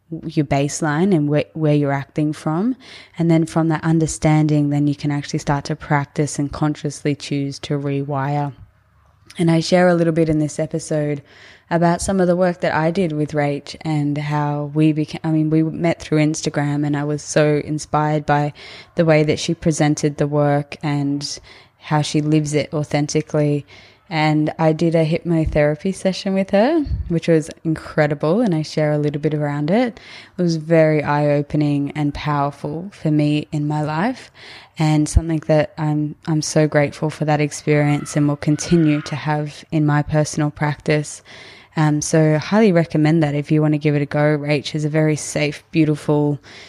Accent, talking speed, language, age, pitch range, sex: Australian, 180 wpm, English, 20-39, 150-160 Hz, female